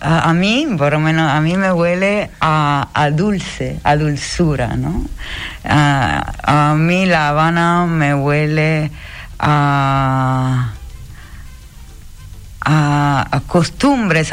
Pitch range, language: 150-185 Hz, Spanish